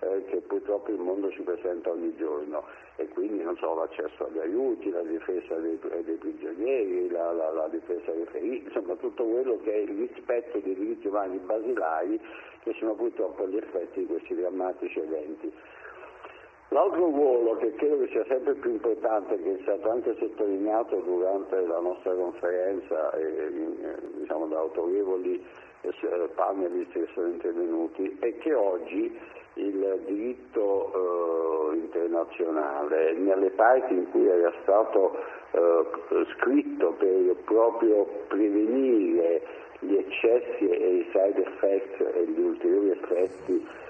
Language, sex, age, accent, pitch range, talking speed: Italian, male, 50-69, native, 355-450 Hz, 135 wpm